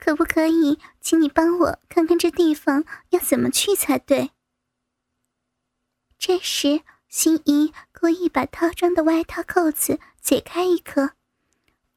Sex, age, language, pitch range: male, 10-29, Chinese, 310-360 Hz